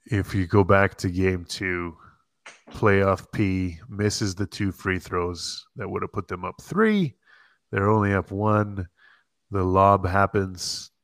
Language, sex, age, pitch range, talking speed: English, male, 20-39, 90-120 Hz, 150 wpm